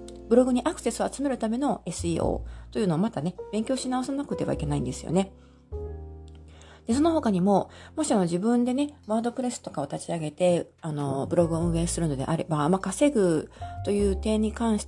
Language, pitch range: Japanese, 155-220 Hz